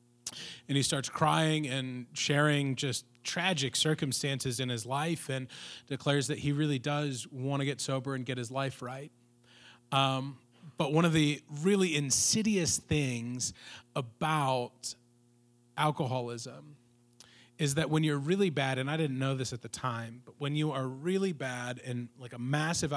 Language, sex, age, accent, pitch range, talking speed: English, male, 30-49, American, 125-150 Hz, 160 wpm